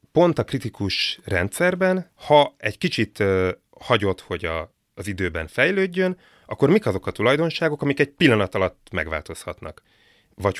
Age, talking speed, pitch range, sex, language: 30-49, 130 wpm, 95-120 Hz, male, Hungarian